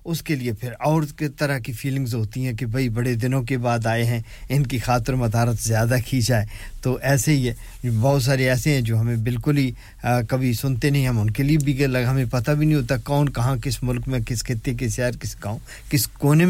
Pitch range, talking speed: 120-135 Hz, 220 wpm